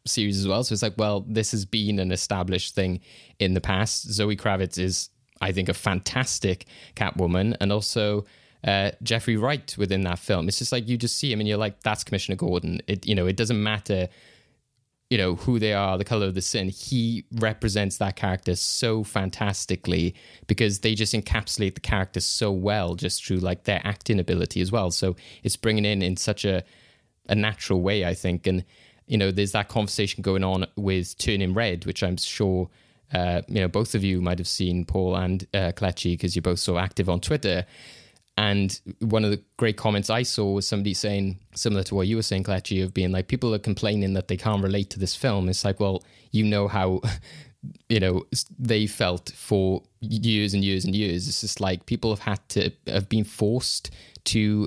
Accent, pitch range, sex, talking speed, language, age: British, 95-110 Hz, male, 205 wpm, English, 20-39